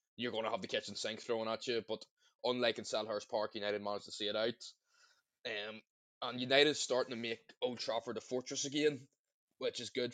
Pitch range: 110-130 Hz